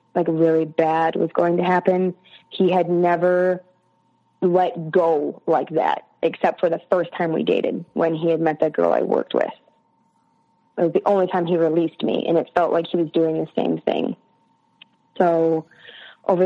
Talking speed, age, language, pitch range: 180 wpm, 20-39, English, 165-190 Hz